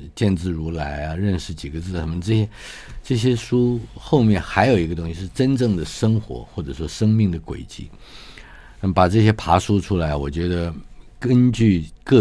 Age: 50-69